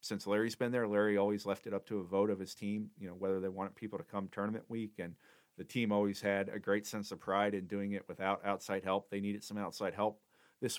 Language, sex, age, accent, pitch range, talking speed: English, male, 40-59, American, 100-115 Hz, 260 wpm